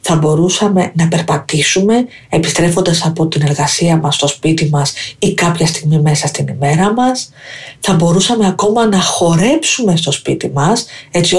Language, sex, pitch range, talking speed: Greek, female, 155-180 Hz, 150 wpm